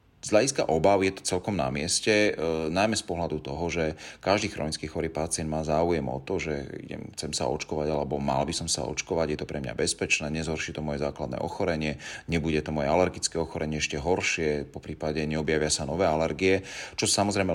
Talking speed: 195 wpm